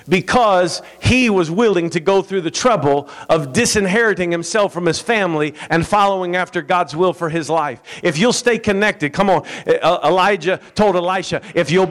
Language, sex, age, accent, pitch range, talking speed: English, male, 50-69, American, 165-210 Hz, 170 wpm